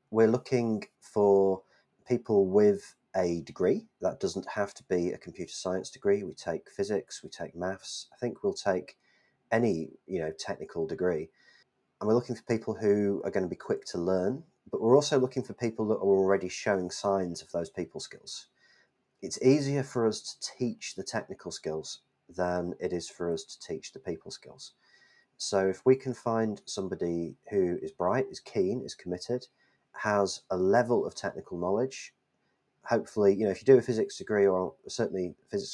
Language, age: English, 30-49